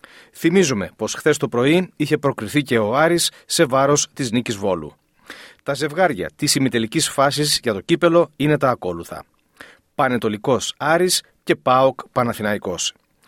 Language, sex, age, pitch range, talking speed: Greek, male, 40-59, 120-165 Hz, 140 wpm